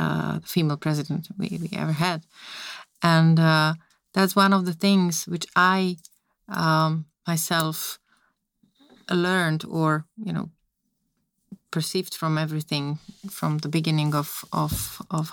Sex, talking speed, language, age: female, 125 wpm, Slovak, 30-49